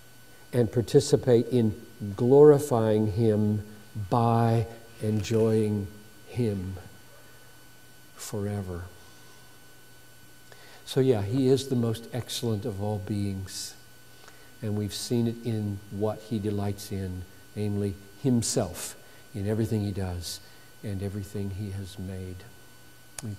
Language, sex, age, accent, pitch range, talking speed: English, male, 50-69, American, 100-120 Hz, 105 wpm